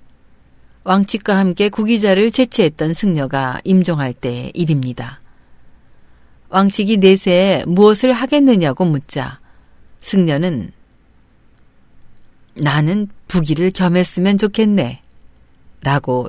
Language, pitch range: Korean, 135-200 Hz